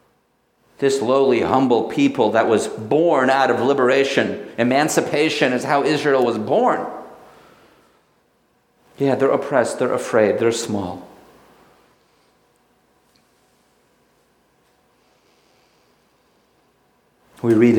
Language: English